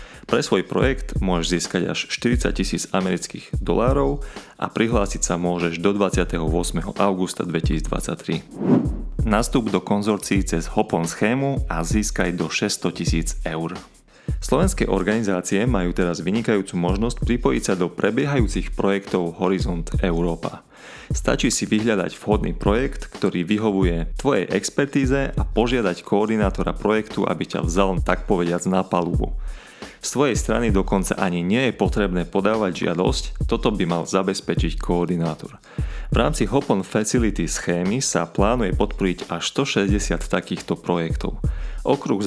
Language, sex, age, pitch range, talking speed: Slovak, male, 30-49, 90-105 Hz, 130 wpm